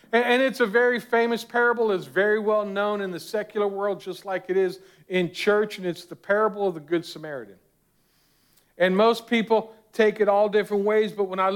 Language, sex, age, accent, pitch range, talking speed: English, male, 50-69, American, 175-215 Hz, 200 wpm